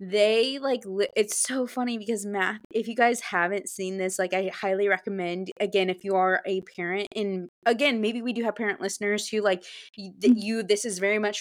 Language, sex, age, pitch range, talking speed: English, female, 20-39, 190-235 Hz, 210 wpm